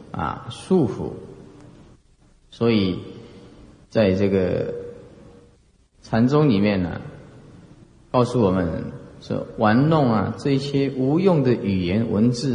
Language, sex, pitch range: Chinese, male, 100-140 Hz